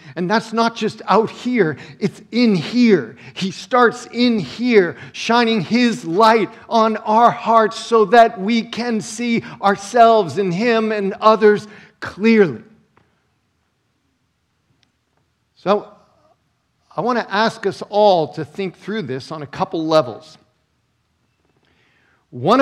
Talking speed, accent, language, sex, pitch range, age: 120 wpm, American, English, male, 130-210 Hz, 50-69